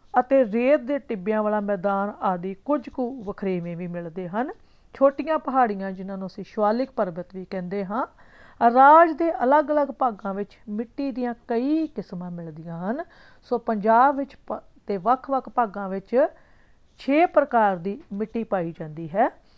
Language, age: Punjabi, 50-69